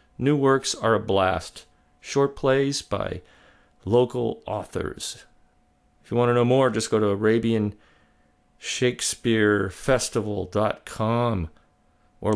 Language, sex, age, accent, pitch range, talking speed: English, male, 40-59, American, 105-140 Hz, 100 wpm